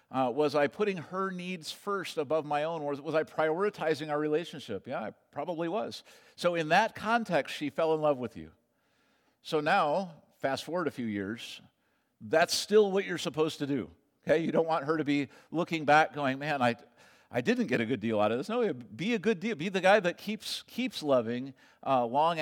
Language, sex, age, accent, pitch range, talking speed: English, male, 50-69, American, 135-180 Hz, 210 wpm